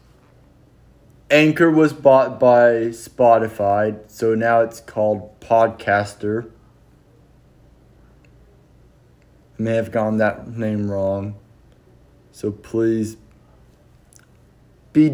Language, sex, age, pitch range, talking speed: English, male, 20-39, 105-125 Hz, 80 wpm